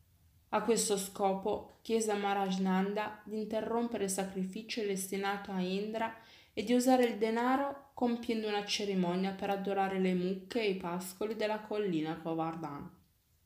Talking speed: 140 wpm